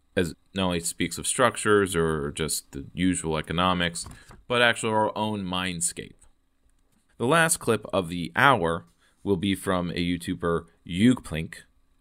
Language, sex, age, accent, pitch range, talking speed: English, male, 30-49, American, 80-105 Hz, 140 wpm